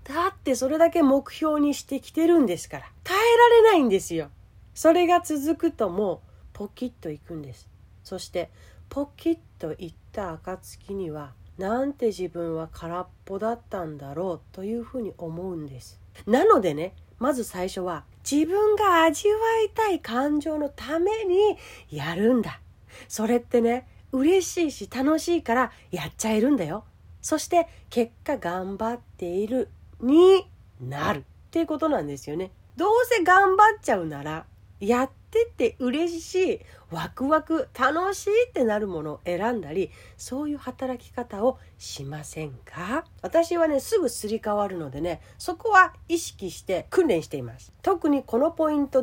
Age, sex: 40-59, female